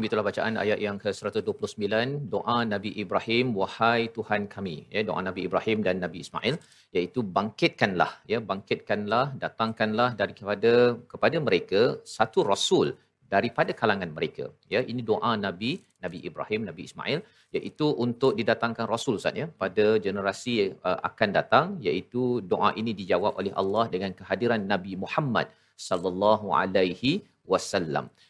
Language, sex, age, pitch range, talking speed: Malayalam, male, 40-59, 105-130 Hz, 130 wpm